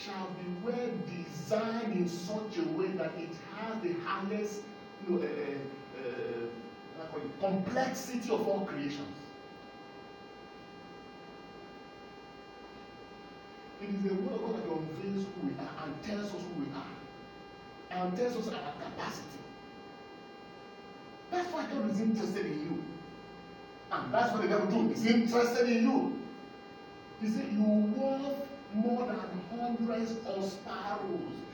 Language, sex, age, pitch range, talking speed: English, male, 40-59, 175-235 Hz, 120 wpm